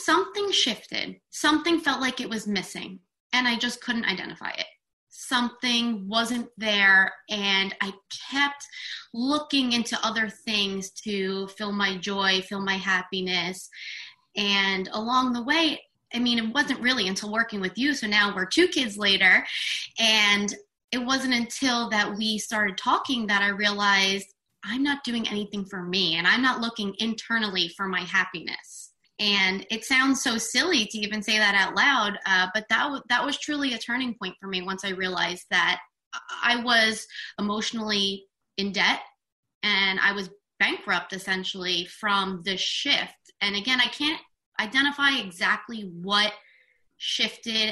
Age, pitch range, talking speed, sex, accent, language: 20-39, 195-240 Hz, 155 wpm, female, American, English